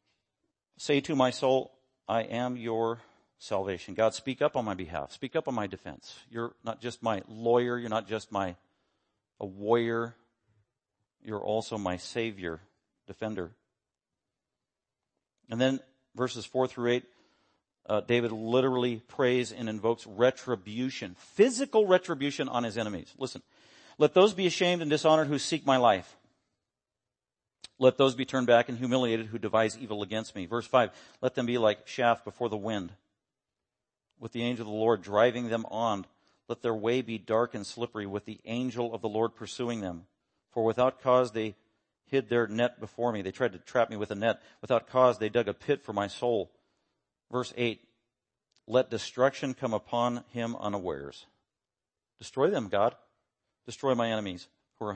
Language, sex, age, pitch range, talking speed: English, male, 50-69, 110-125 Hz, 165 wpm